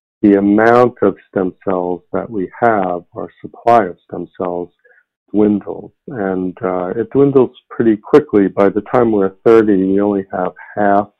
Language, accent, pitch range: English, American, 90-105 Hz